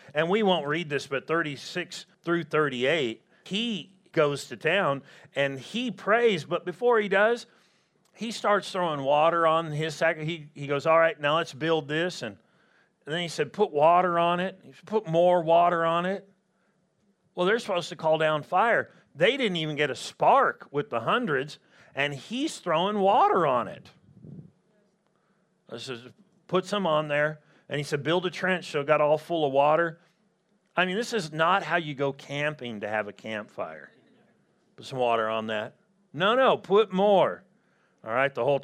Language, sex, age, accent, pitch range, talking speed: English, male, 40-59, American, 145-195 Hz, 180 wpm